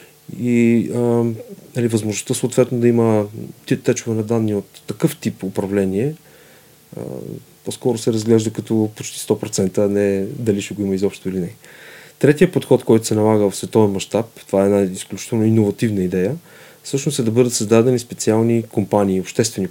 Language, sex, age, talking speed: Bulgarian, male, 30-49, 160 wpm